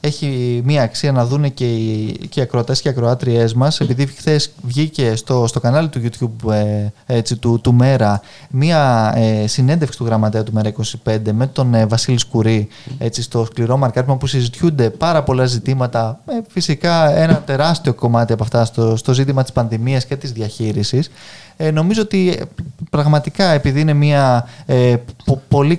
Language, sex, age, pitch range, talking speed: Greek, male, 20-39, 120-170 Hz, 165 wpm